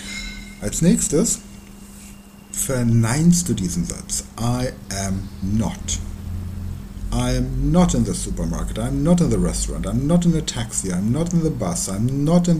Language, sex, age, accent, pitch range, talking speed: German, male, 60-79, German, 95-165 Hz, 175 wpm